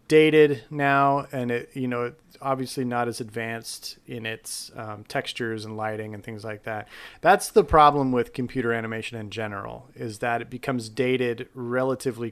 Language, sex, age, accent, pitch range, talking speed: English, male, 30-49, American, 115-130 Hz, 170 wpm